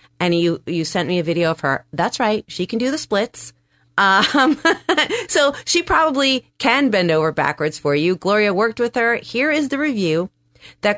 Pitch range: 160-215 Hz